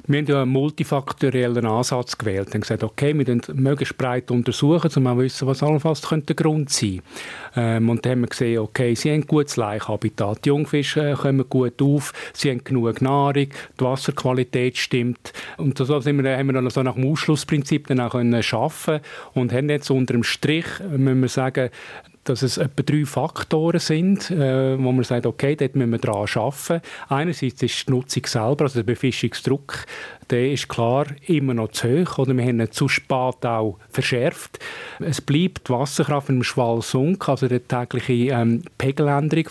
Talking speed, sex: 160 wpm, male